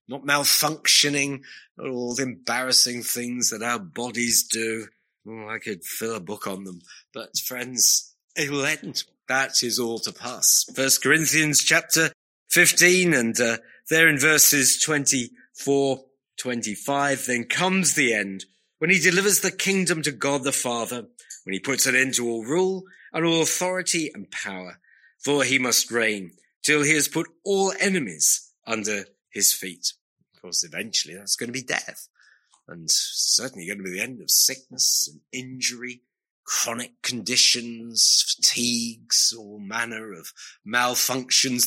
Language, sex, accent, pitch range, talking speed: English, male, British, 115-155 Hz, 150 wpm